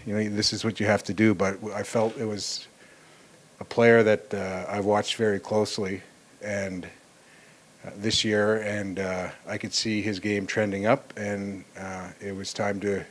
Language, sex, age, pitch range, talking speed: English, male, 40-59, 100-110 Hz, 190 wpm